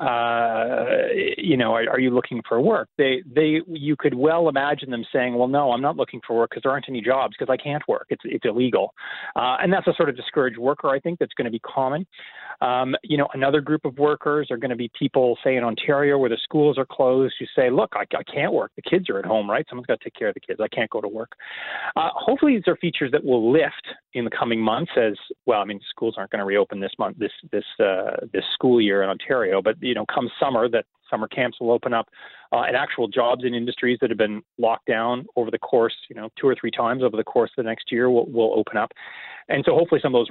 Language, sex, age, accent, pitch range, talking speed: English, male, 30-49, American, 120-150 Hz, 265 wpm